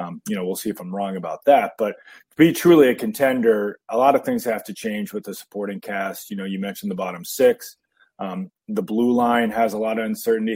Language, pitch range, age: English, 100-140 Hz, 20-39